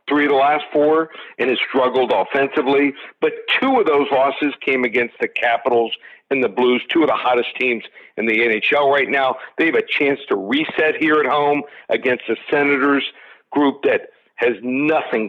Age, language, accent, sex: 50-69, English, American, male